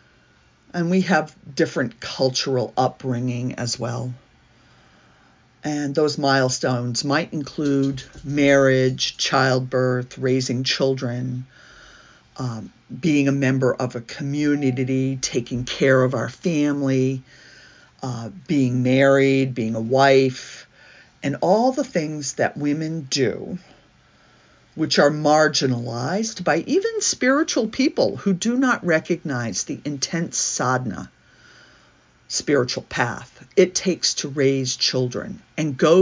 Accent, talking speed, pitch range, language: American, 110 wpm, 130-170 Hz, English